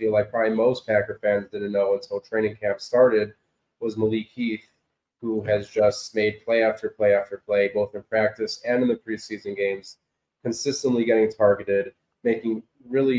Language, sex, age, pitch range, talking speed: English, male, 30-49, 105-120 Hz, 165 wpm